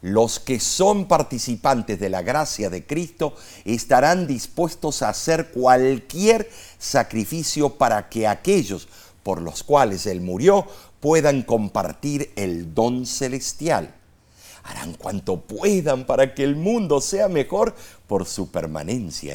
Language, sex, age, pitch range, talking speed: Spanish, male, 50-69, 110-180 Hz, 125 wpm